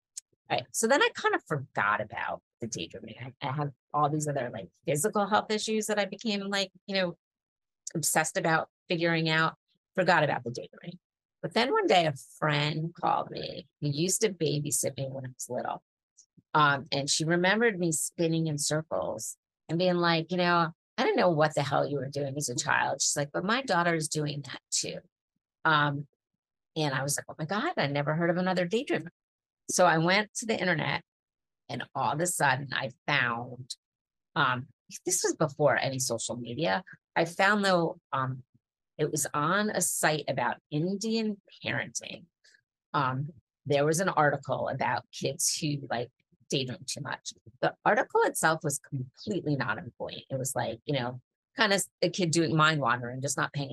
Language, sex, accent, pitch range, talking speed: English, female, American, 140-180 Hz, 185 wpm